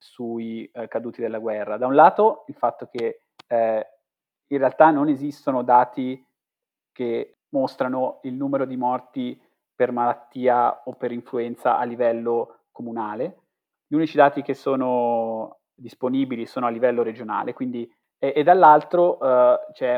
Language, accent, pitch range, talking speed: Italian, native, 120-140 Hz, 140 wpm